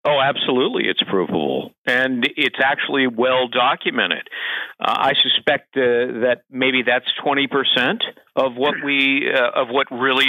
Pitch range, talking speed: 110-150 Hz, 145 wpm